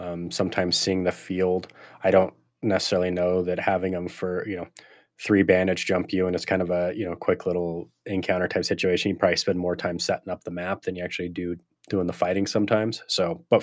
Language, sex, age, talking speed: English, male, 20-39, 220 wpm